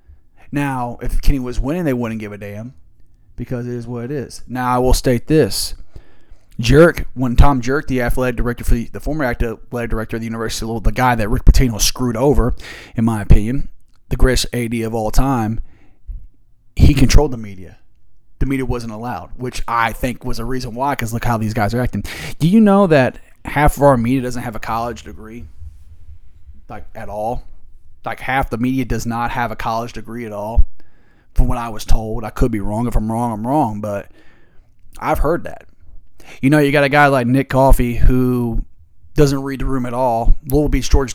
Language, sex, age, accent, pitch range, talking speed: English, male, 30-49, American, 110-135 Hz, 205 wpm